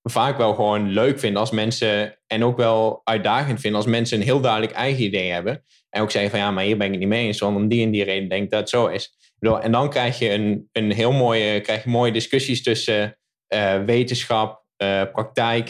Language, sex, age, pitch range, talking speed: Dutch, male, 20-39, 100-120 Hz, 235 wpm